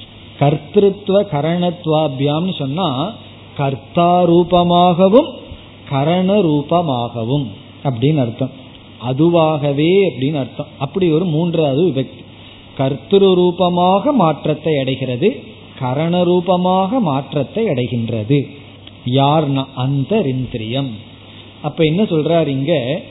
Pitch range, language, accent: 130-180 Hz, Tamil, native